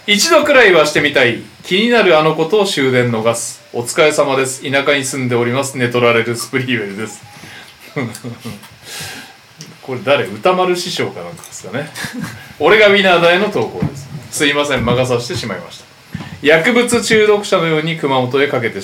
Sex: male